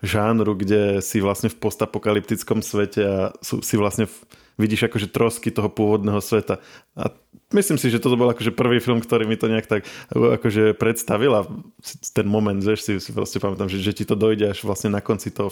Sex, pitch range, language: male, 100-115 Hz, Slovak